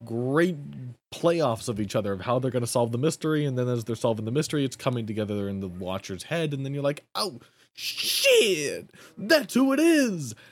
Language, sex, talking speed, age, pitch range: English, male, 210 wpm, 20-39, 105-150 Hz